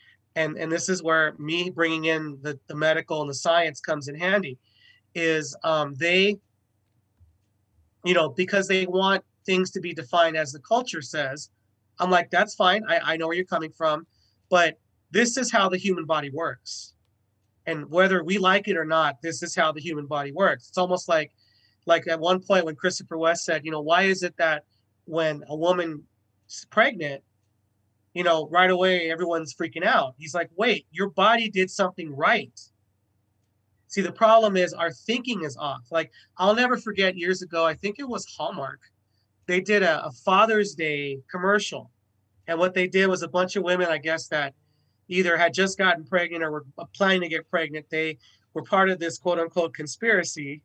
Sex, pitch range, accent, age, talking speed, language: male, 145-185 Hz, American, 30-49, 190 wpm, English